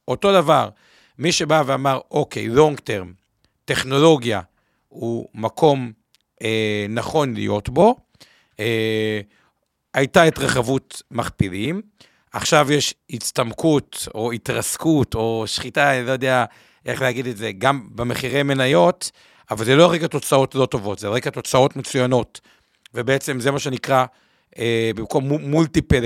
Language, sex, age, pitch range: Hebrew, male, 50-69, 115-150 Hz